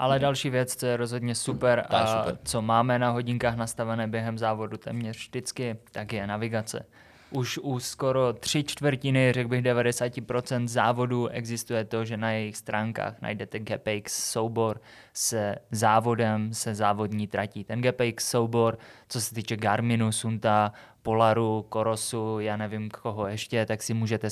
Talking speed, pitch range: 150 wpm, 110-120 Hz